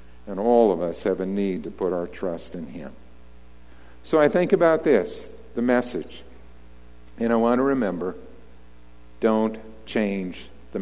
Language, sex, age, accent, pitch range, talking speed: English, male, 50-69, American, 85-135 Hz, 155 wpm